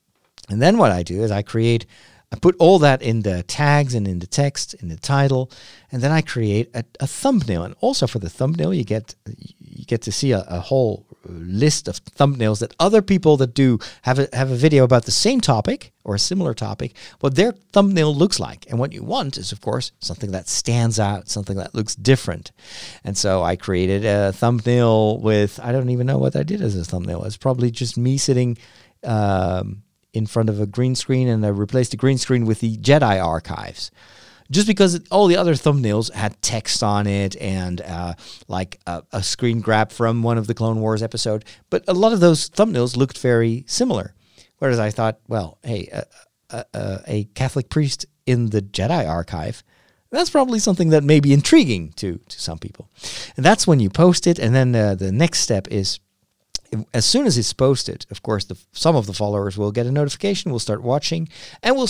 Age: 50-69